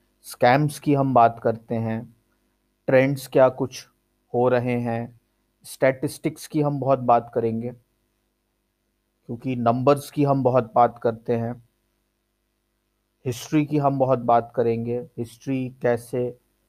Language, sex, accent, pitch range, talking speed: Hindi, male, native, 120-135 Hz, 120 wpm